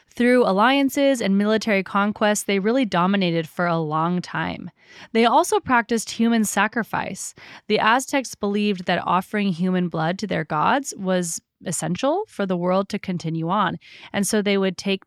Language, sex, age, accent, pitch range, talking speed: English, female, 20-39, American, 175-220 Hz, 160 wpm